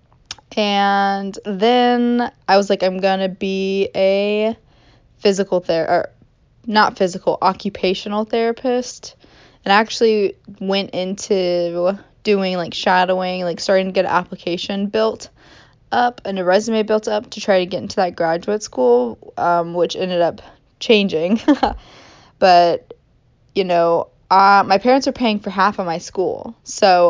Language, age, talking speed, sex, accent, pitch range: English, 20-39, 145 wpm, female, American, 180-210 Hz